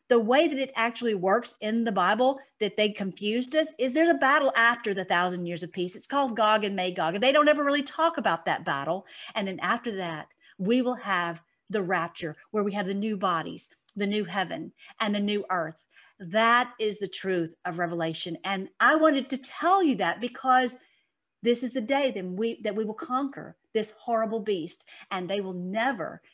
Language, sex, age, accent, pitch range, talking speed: English, female, 50-69, American, 200-265 Hz, 205 wpm